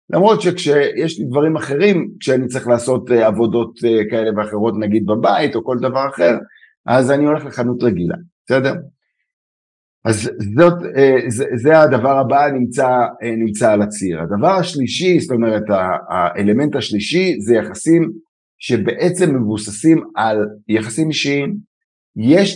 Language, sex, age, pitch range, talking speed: Hebrew, male, 50-69, 110-155 Hz, 120 wpm